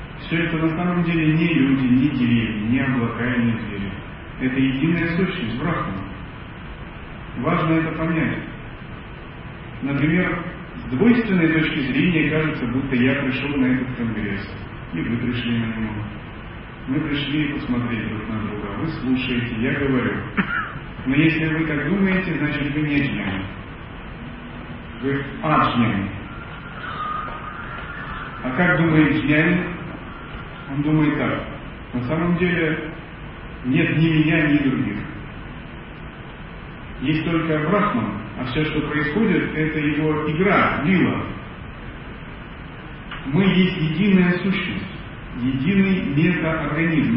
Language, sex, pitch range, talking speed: Russian, male, 125-165 Hz, 115 wpm